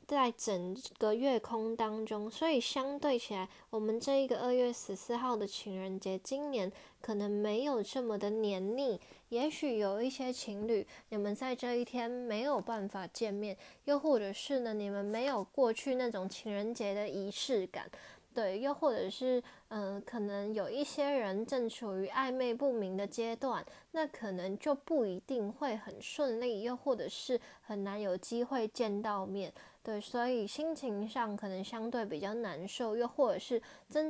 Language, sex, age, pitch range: Chinese, female, 10-29, 200-250 Hz